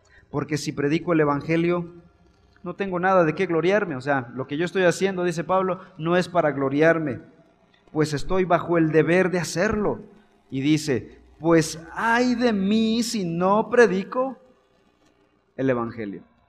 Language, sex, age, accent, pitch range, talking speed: Spanish, male, 40-59, Mexican, 125-190 Hz, 155 wpm